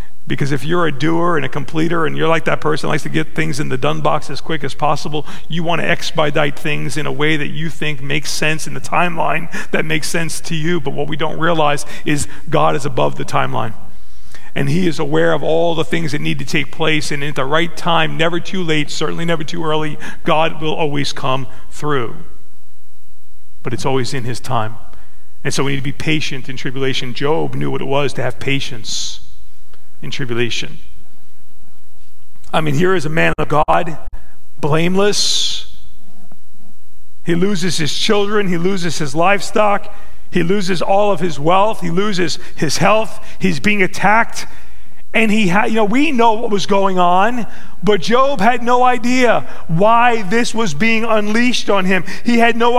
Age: 40-59